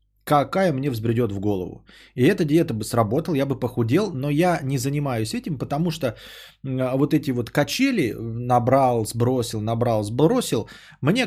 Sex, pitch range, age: male, 105-150 Hz, 20-39